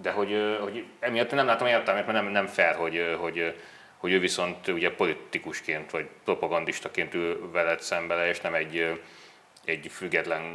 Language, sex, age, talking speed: Hungarian, male, 30-49, 165 wpm